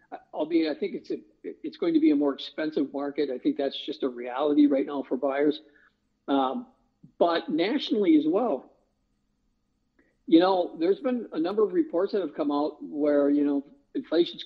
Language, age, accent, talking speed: English, 50-69, American, 180 wpm